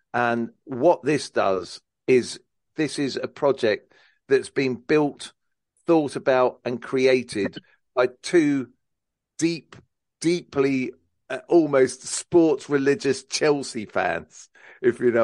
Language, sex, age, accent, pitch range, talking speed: English, male, 40-59, British, 125-165 Hz, 115 wpm